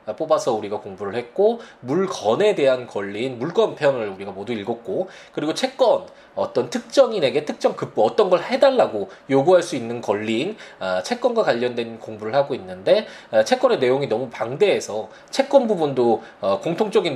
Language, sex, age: Korean, male, 20-39